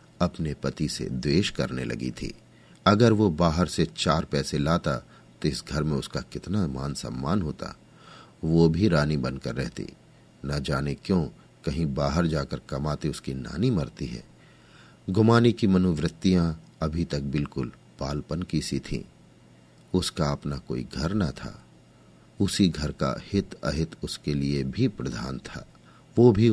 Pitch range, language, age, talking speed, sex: 70-95 Hz, Hindi, 50-69, 145 wpm, male